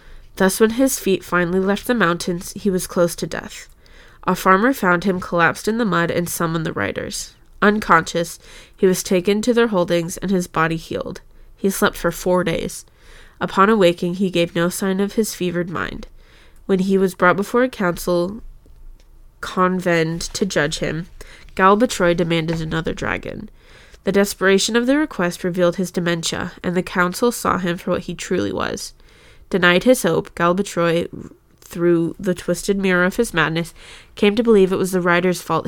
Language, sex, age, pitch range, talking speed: English, female, 20-39, 175-200 Hz, 175 wpm